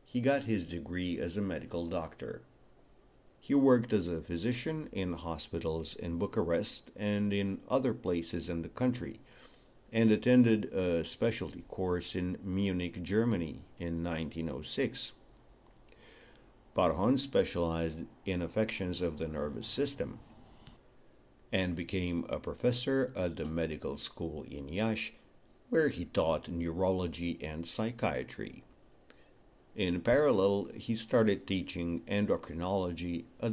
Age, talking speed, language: 60-79, 115 wpm, English